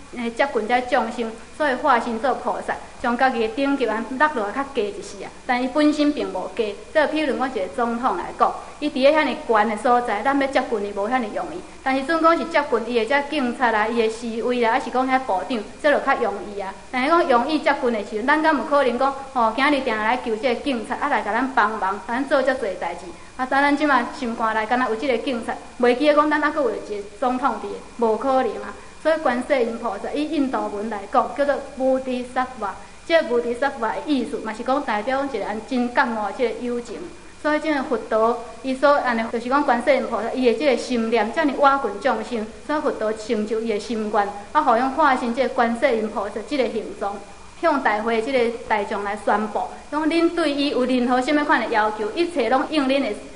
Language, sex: English, female